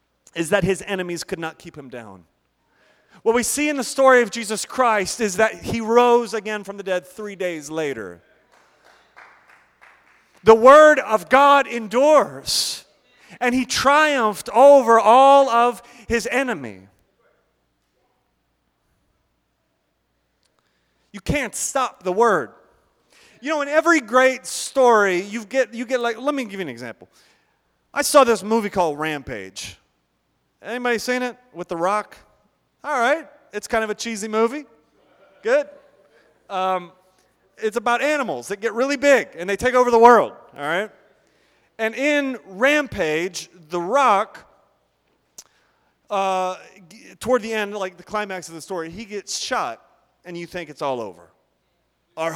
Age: 30-49